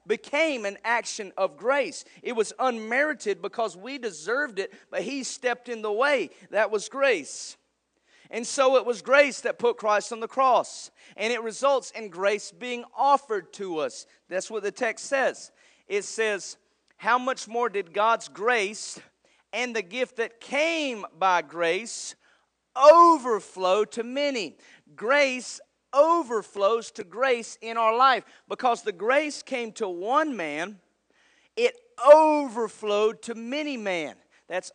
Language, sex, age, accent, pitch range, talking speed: English, male, 40-59, American, 200-275 Hz, 145 wpm